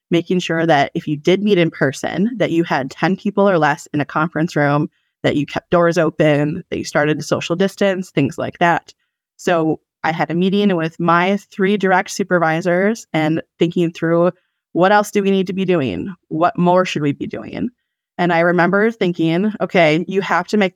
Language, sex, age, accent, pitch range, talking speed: English, female, 20-39, American, 155-190 Hz, 200 wpm